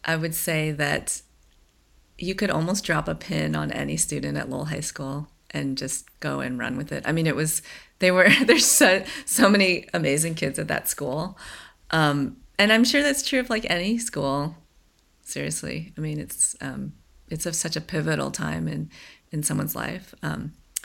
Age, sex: 30-49, female